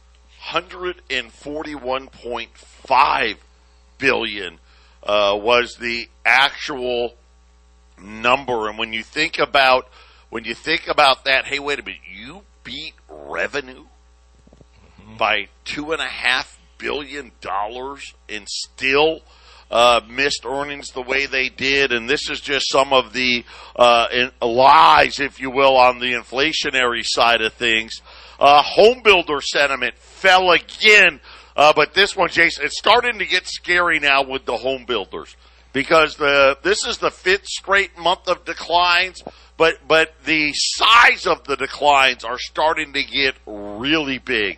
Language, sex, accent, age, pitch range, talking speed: English, male, American, 50-69, 120-170 Hz, 140 wpm